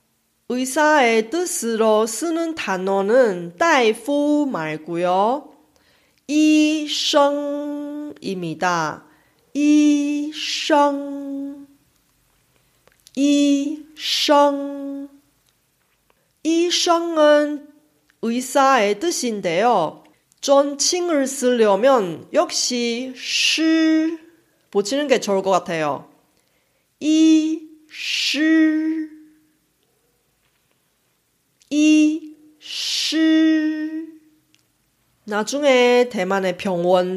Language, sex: Korean, female